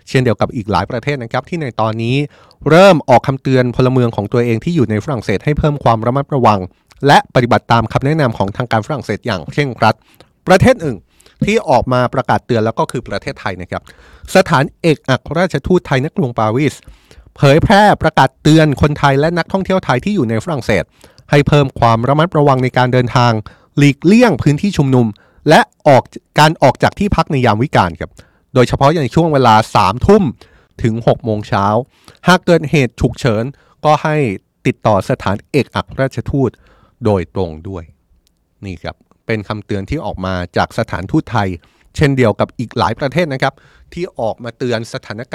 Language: Thai